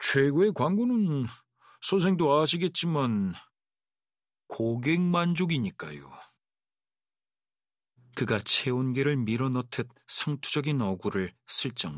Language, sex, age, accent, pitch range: Korean, male, 40-59, native, 115-135 Hz